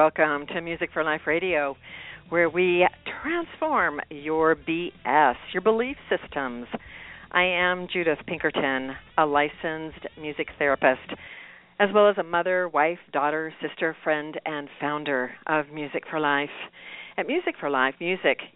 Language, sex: English, female